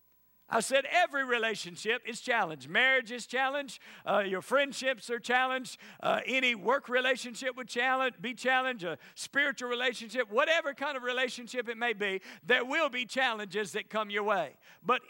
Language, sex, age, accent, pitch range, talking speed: English, male, 50-69, American, 210-260 Hz, 160 wpm